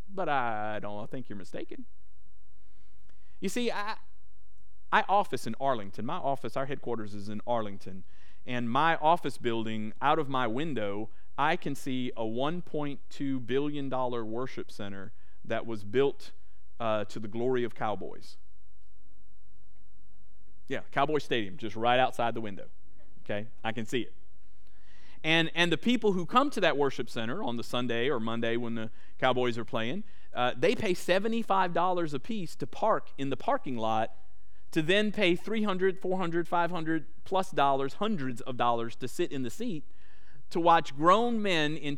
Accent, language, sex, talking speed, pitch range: American, English, male, 160 wpm, 105-170 Hz